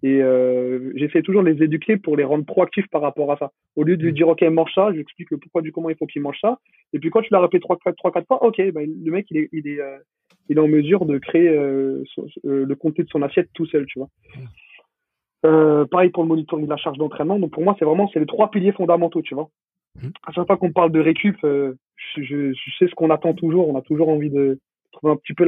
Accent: French